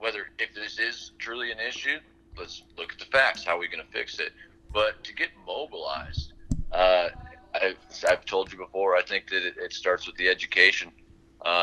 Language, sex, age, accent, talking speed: English, male, 40-59, American, 195 wpm